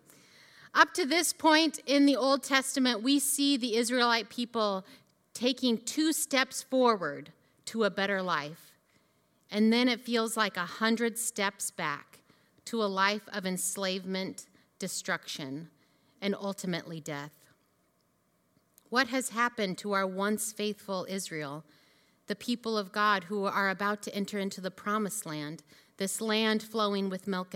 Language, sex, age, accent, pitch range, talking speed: English, female, 30-49, American, 175-235 Hz, 140 wpm